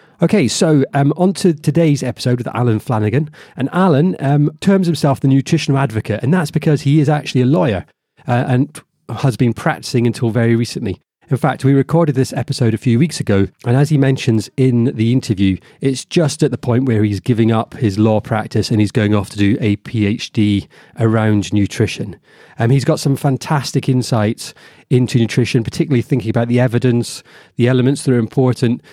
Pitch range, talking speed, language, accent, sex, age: 110-140 Hz, 190 wpm, English, British, male, 30-49